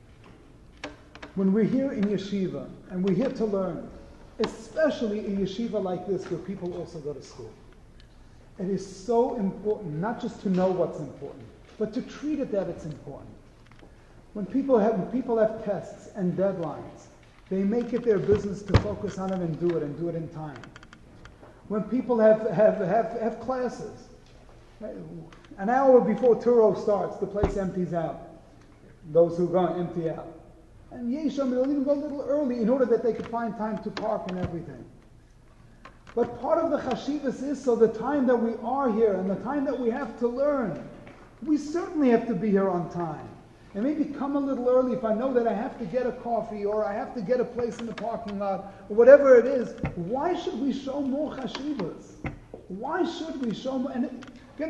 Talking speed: 195 wpm